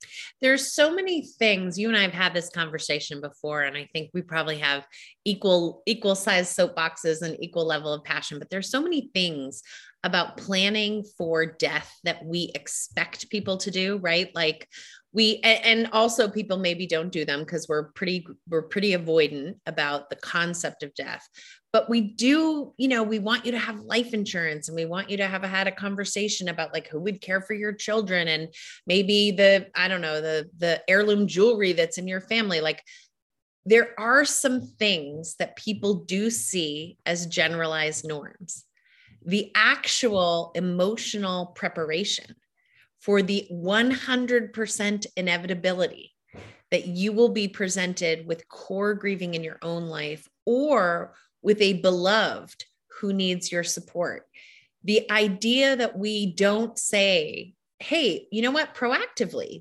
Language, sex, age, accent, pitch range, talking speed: English, female, 30-49, American, 165-215 Hz, 160 wpm